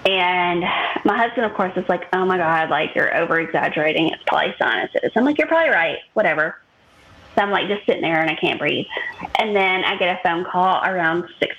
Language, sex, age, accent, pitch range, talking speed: English, female, 20-39, American, 170-250 Hz, 205 wpm